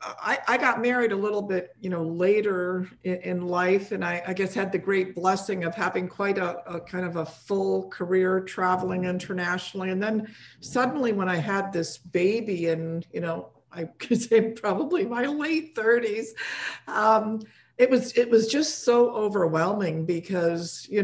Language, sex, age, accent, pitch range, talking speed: English, female, 50-69, American, 180-230 Hz, 175 wpm